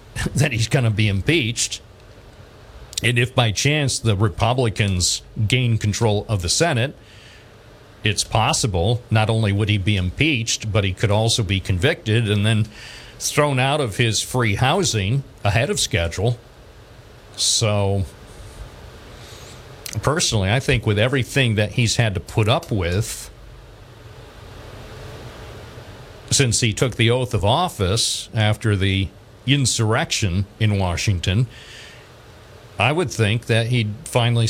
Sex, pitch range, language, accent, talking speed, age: male, 105-125 Hz, English, American, 125 wpm, 50-69